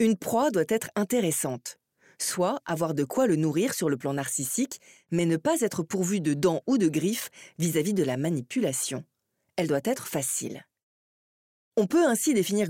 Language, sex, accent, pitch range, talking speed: French, female, French, 140-210 Hz, 175 wpm